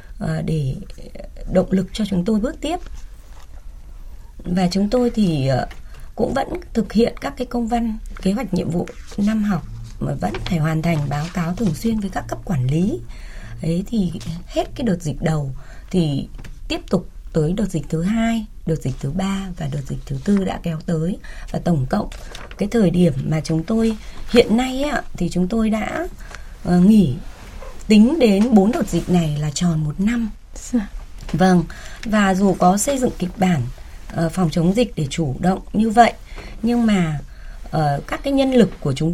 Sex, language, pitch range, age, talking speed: female, Vietnamese, 160-220 Hz, 20-39, 180 wpm